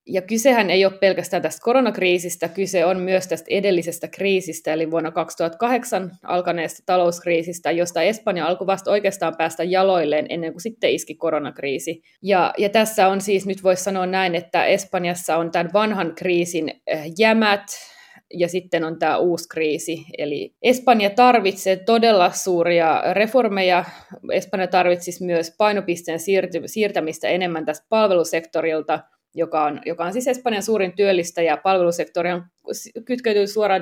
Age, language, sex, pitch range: 20-39, Finnish, female, 170-205 Hz